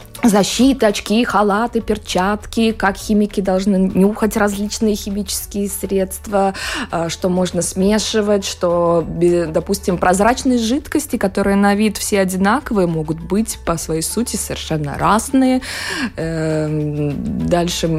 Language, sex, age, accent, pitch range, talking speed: Russian, female, 20-39, native, 180-225 Hz, 110 wpm